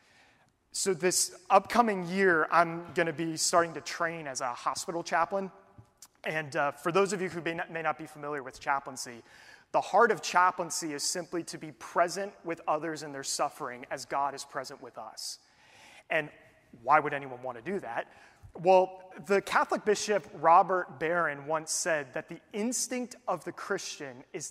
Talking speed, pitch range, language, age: 175 wpm, 150-185 Hz, English, 30-49